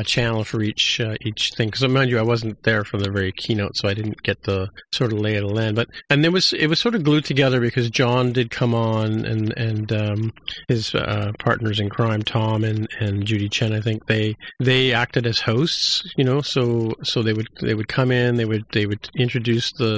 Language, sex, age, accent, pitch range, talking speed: English, male, 40-59, American, 105-120 Hz, 235 wpm